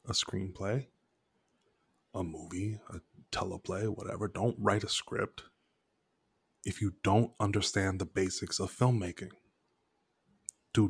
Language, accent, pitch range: English, American, 95-115 Hz